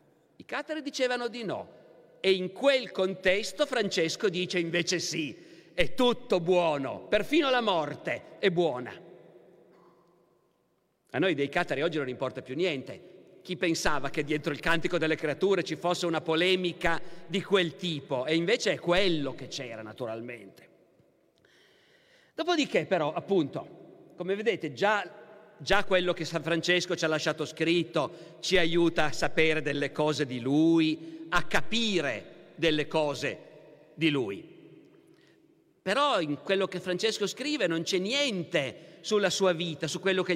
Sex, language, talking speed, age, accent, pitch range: male, Italian, 145 wpm, 50-69, native, 160-200 Hz